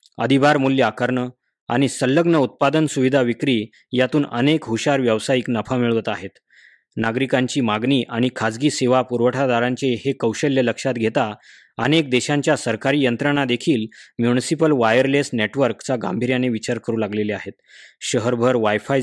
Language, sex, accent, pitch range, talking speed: Marathi, male, native, 120-140 Hz, 125 wpm